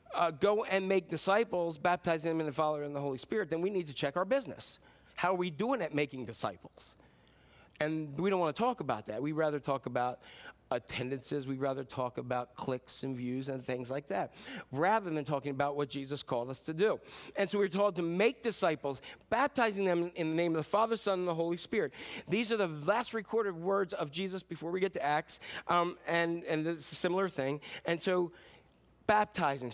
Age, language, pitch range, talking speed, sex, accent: 40-59, English, 145-195 Hz, 210 wpm, male, American